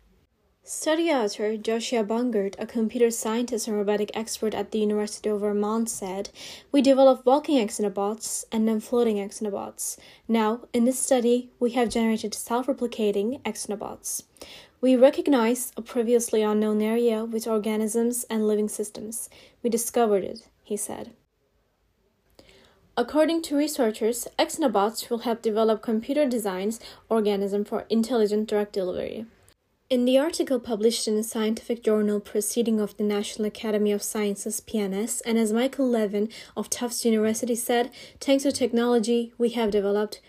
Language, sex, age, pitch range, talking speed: English, female, 10-29, 215-245 Hz, 140 wpm